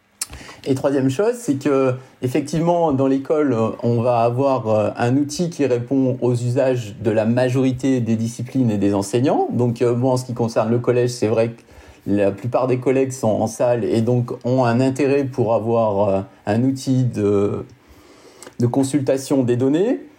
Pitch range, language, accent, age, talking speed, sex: 115-135 Hz, French, French, 40-59, 170 wpm, male